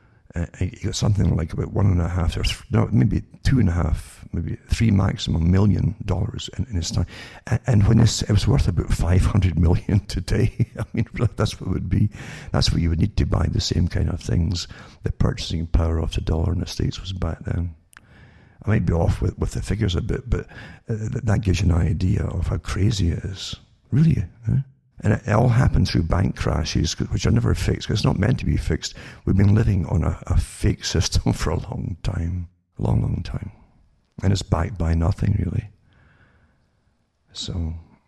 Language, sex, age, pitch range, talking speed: English, male, 60-79, 90-110 Hz, 215 wpm